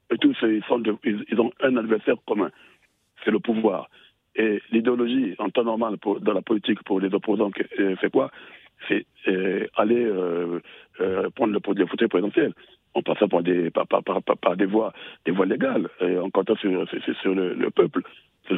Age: 60-79